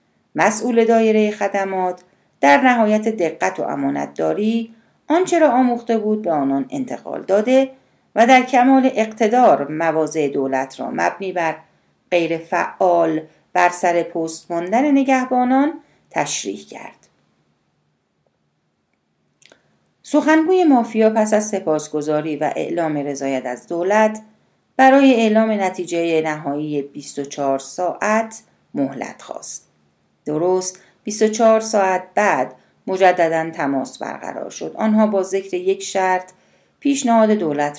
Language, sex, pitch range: Persian, female, 155-230 Hz